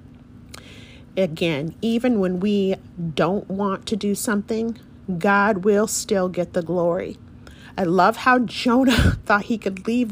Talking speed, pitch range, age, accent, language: 135 wpm, 195-255 Hz, 40-59, American, English